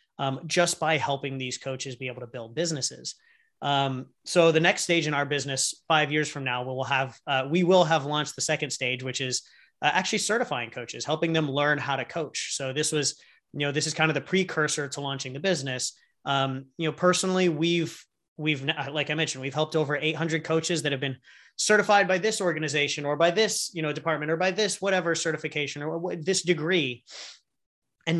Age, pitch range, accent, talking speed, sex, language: 30-49, 140-175 Hz, American, 210 wpm, male, English